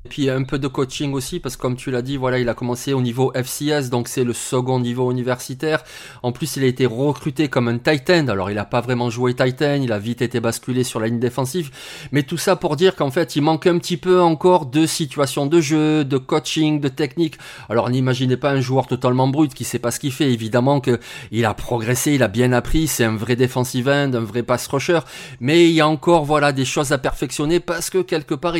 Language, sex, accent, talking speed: French, male, French, 250 wpm